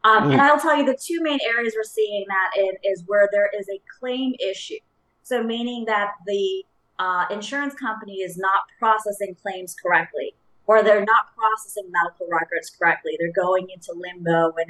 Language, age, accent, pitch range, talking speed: English, 30-49, American, 180-225 Hz, 175 wpm